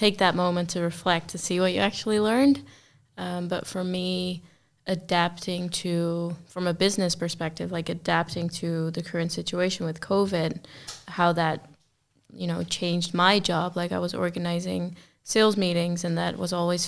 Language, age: English, 20-39